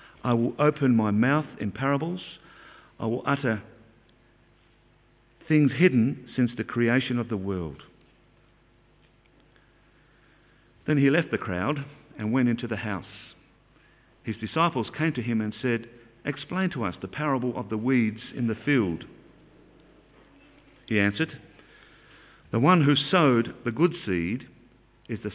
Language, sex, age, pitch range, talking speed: English, male, 50-69, 110-140 Hz, 135 wpm